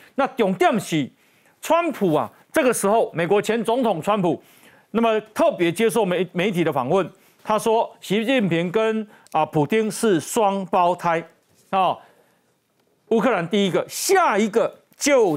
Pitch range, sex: 180-235 Hz, male